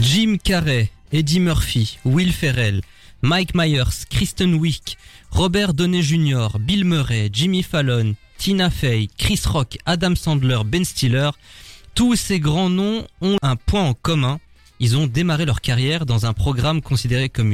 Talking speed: 150 wpm